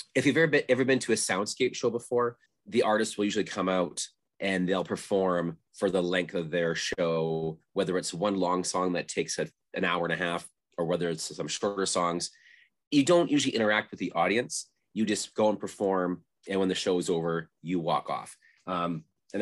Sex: male